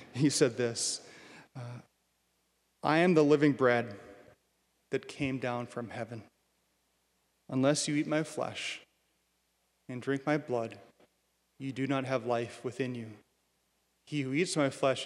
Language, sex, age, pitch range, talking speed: English, male, 30-49, 120-155 Hz, 140 wpm